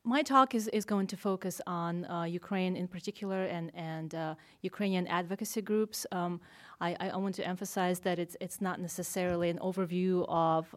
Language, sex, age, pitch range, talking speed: English, female, 30-49, 170-195 Hz, 180 wpm